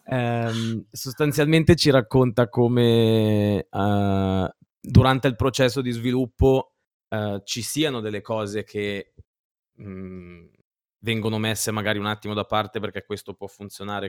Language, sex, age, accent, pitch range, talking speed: Italian, male, 20-39, native, 100-125 Hz, 105 wpm